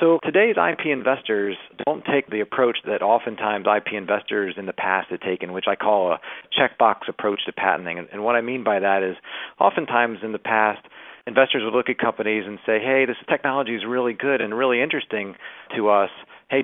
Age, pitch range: 40-59, 105-130 Hz